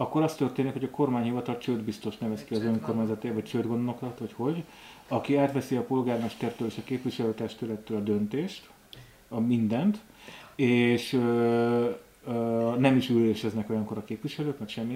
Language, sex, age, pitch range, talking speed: Hungarian, male, 30-49, 115-140 Hz, 150 wpm